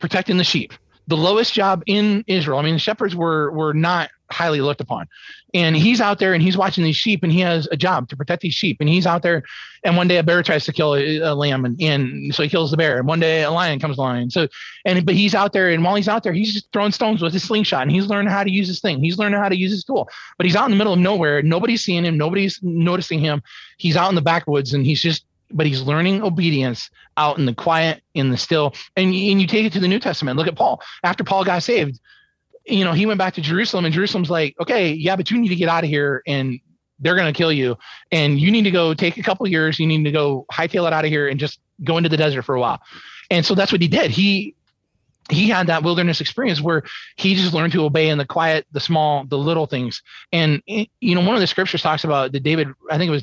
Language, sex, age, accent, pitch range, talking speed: English, male, 30-49, American, 150-190 Hz, 270 wpm